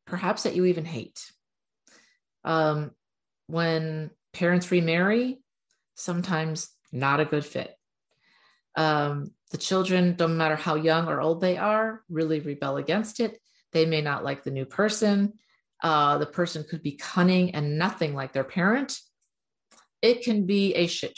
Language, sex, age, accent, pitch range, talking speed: English, female, 40-59, American, 155-195 Hz, 145 wpm